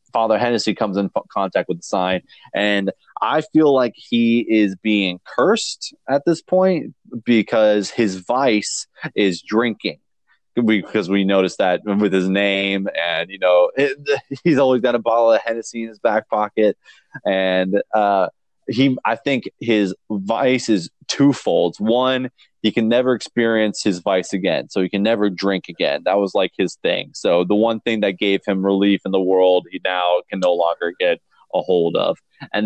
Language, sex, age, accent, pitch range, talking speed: English, male, 20-39, American, 95-120 Hz, 175 wpm